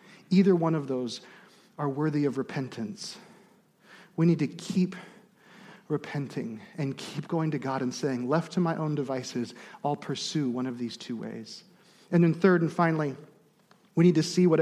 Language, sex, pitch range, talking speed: English, male, 150-200 Hz, 170 wpm